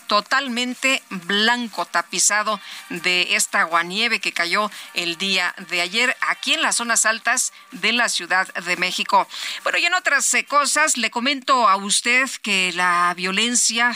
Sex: female